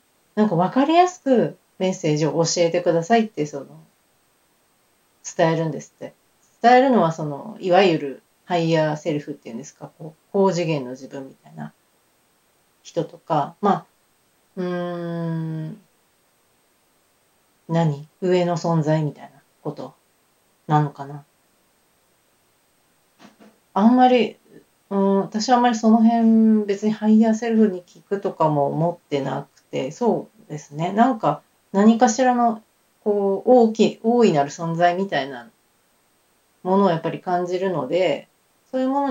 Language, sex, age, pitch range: Japanese, female, 40-59, 160-220 Hz